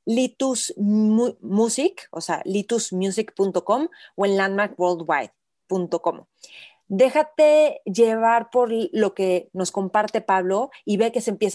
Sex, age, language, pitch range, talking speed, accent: female, 30-49, Spanish, 180-220 Hz, 110 wpm, Mexican